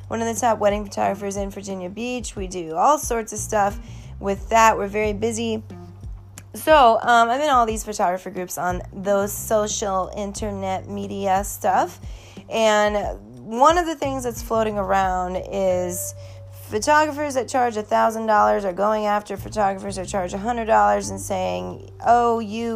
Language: English